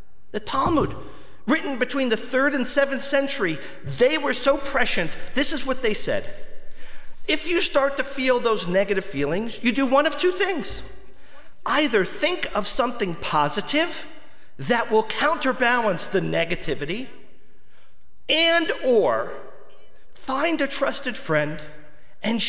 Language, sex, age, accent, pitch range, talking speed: English, male, 40-59, American, 170-250 Hz, 130 wpm